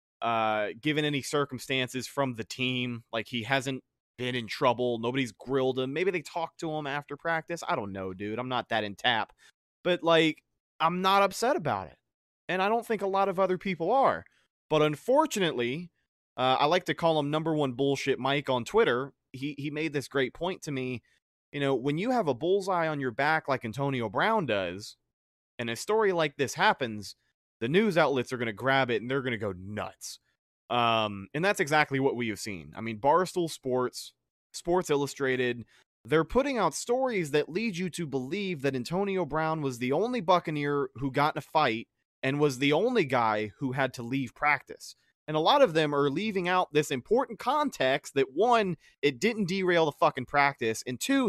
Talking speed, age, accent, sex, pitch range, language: 200 wpm, 30-49, American, male, 125-175 Hz, English